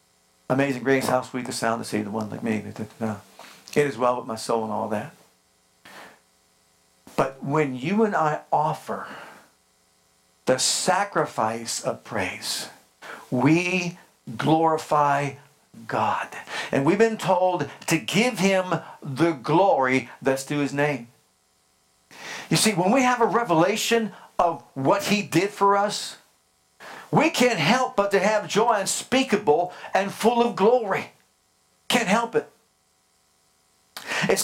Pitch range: 135-225 Hz